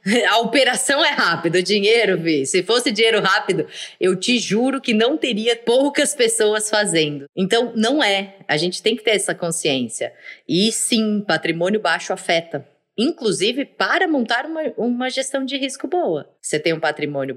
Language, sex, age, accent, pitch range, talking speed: Portuguese, female, 20-39, Brazilian, 185-240 Hz, 165 wpm